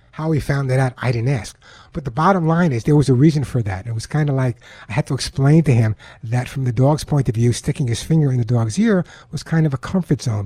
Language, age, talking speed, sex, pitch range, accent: English, 60-79, 285 wpm, male, 120-145 Hz, American